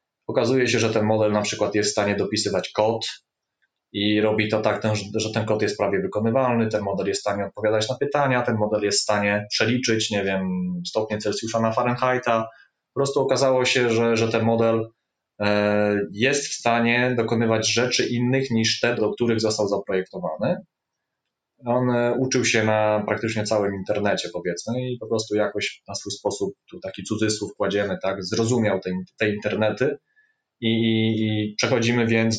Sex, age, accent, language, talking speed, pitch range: male, 20-39, native, Polish, 165 wpm, 105-120 Hz